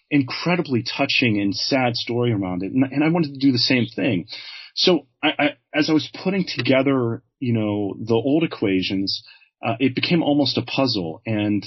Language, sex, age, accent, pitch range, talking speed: English, male, 30-49, American, 110-140 Hz, 185 wpm